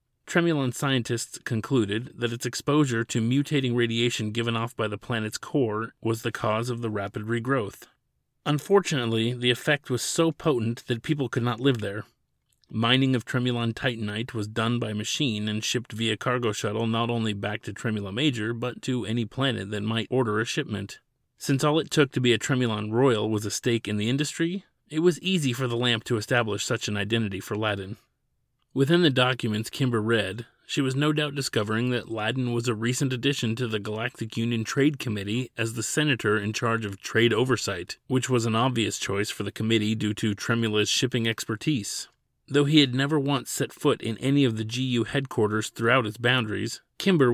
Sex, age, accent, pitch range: male, 30-49, American, 110-130 Hz